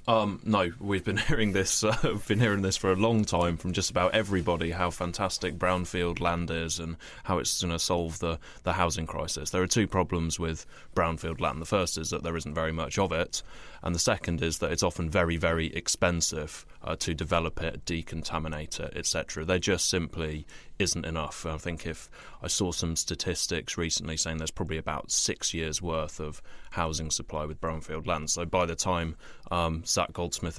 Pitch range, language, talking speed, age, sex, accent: 80-95 Hz, English, 200 wpm, 20-39, male, British